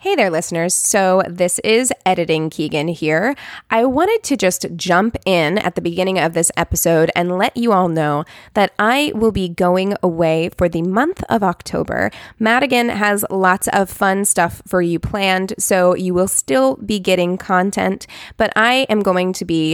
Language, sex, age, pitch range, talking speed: English, female, 20-39, 170-205 Hz, 180 wpm